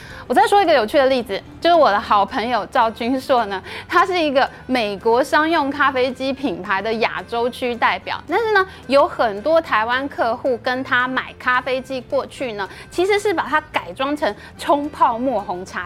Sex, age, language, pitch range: female, 20-39, Chinese, 230-320 Hz